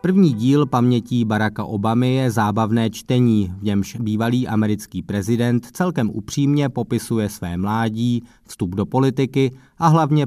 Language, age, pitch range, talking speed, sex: Czech, 20-39, 100-125 Hz, 135 wpm, male